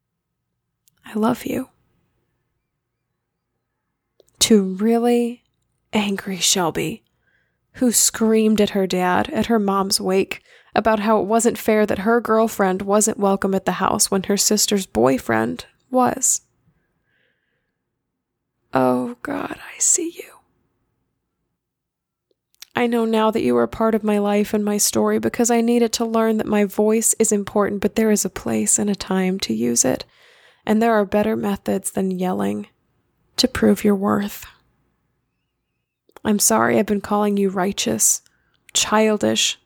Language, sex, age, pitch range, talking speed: English, female, 20-39, 190-225 Hz, 140 wpm